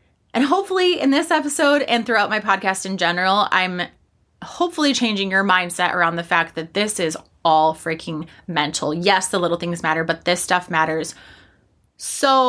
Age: 20-39